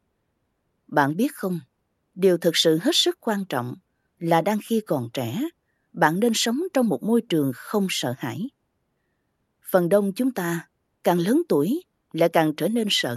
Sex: female